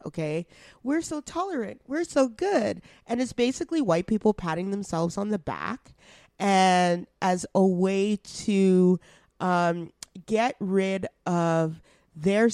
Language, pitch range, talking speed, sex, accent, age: English, 170-240 Hz, 130 wpm, female, American, 30-49